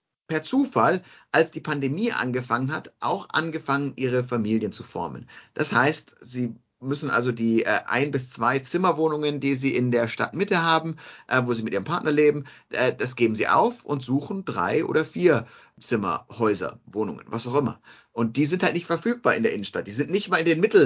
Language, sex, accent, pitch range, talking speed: German, male, German, 115-145 Hz, 195 wpm